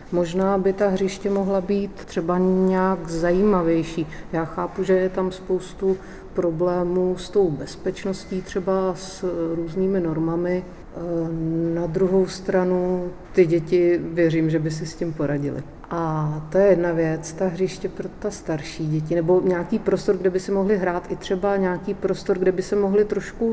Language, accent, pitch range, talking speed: Czech, native, 160-185 Hz, 160 wpm